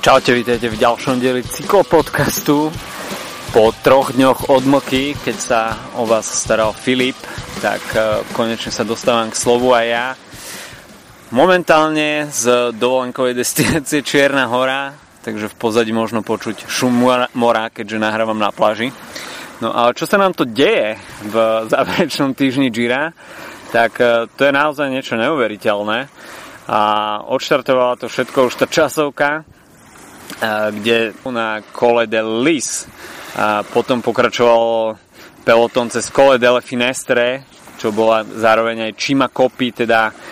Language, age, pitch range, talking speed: Slovak, 20-39, 115-135 Hz, 125 wpm